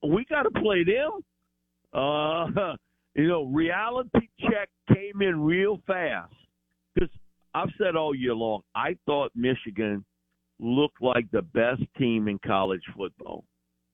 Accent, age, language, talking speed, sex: American, 50-69, English, 135 wpm, male